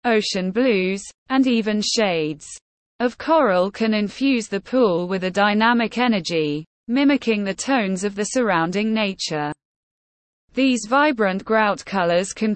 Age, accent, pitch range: 20-39, British, 180-250 Hz